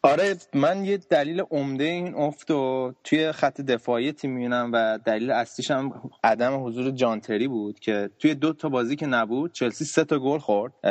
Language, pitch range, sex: Persian, 115-150 Hz, male